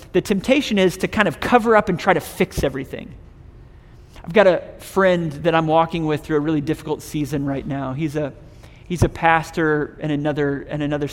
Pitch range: 140-180 Hz